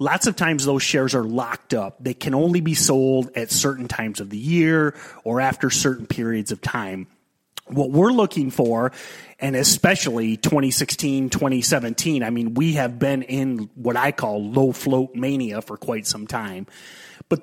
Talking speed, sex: 170 wpm, male